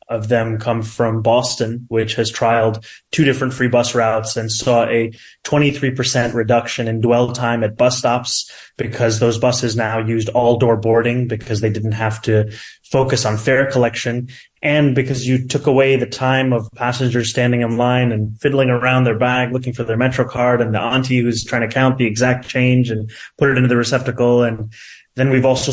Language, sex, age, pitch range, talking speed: English, male, 20-39, 115-130 Hz, 195 wpm